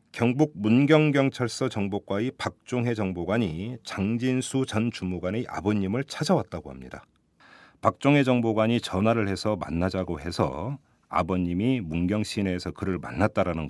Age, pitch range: 40-59, 95-130 Hz